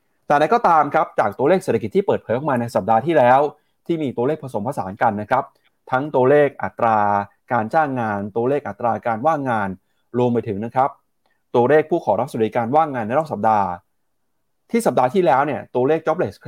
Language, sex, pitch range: Thai, male, 115-145 Hz